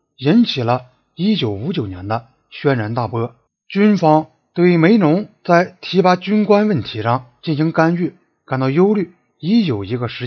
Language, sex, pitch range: Chinese, male, 125-190 Hz